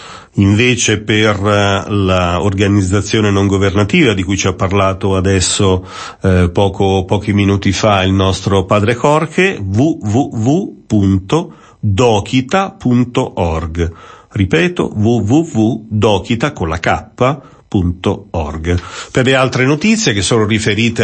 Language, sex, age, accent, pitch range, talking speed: Italian, male, 40-59, native, 95-125 Hz, 85 wpm